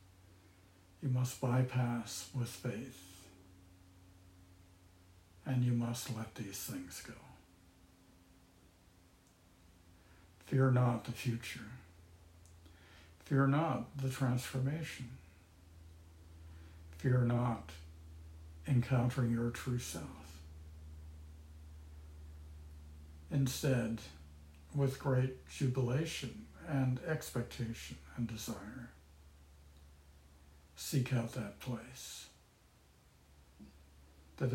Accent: American